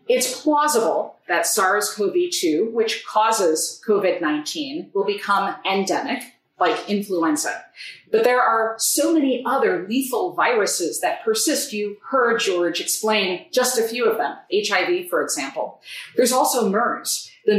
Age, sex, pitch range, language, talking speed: 40-59, female, 190-275 Hz, English, 130 wpm